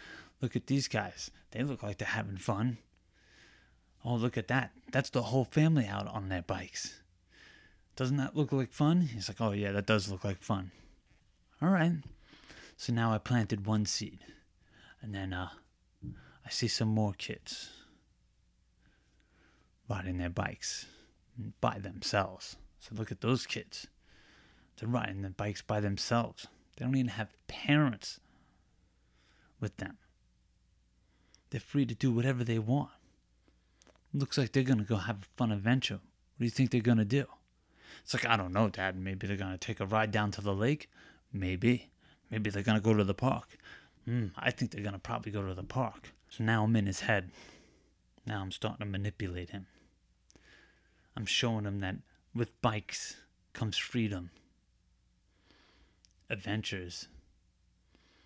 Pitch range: 95-120 Hz